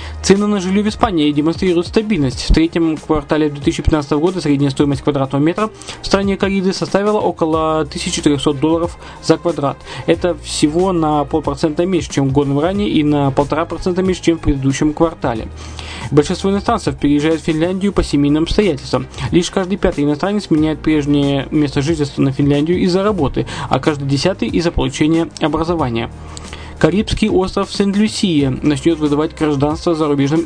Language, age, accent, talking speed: Russian, 20-39, native, 150 wpm